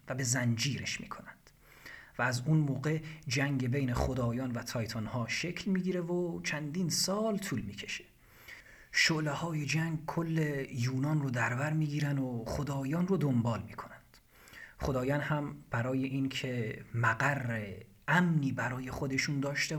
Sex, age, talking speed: male, 40-59, 130 wpm